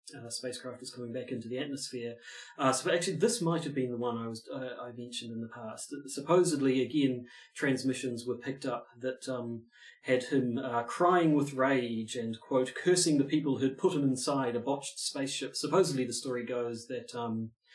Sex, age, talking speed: male, 30-49, 195 wpm